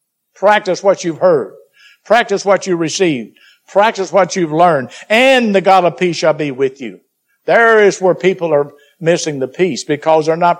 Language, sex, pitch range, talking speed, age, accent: English, male, 165-205 Hz, 180 wpm, 60-79, American